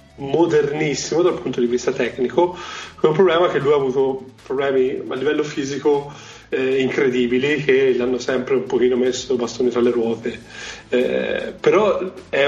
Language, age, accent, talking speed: Italian, 30-49, native, 160 wpm